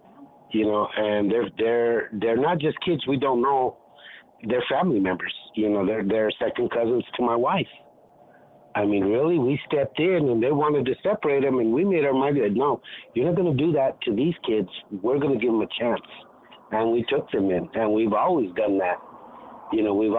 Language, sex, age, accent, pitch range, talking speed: English, male, 50-69, American, 110-150 Hz, 210 wpm